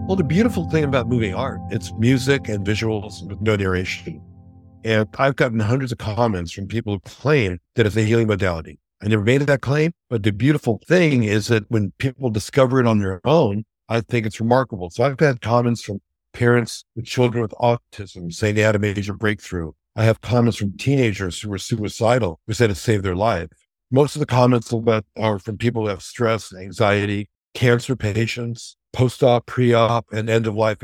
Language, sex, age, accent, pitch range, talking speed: English, male, 60-79, American, 100-125 Hz, 190 wpm